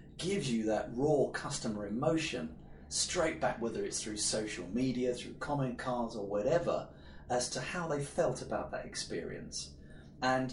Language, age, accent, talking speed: English, 30-49, British, 155 wpm